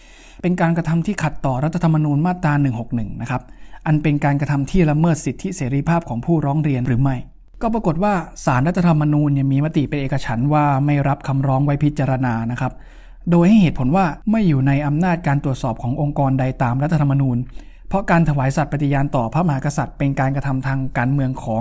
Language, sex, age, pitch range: Thai, male, 20-39, 135-165 Hz